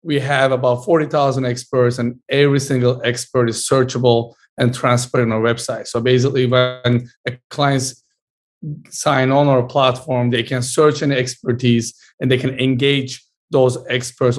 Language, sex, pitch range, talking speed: English, male, 125-145 Hz, 150 wpm